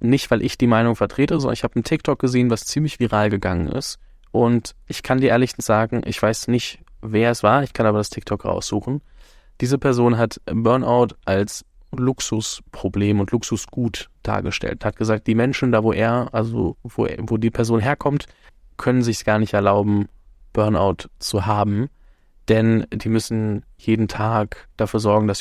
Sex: male